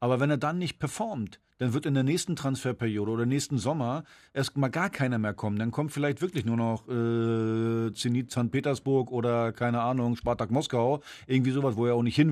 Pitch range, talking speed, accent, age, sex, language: 120-160 Hz, 210 wpm, German, 40-59, male, German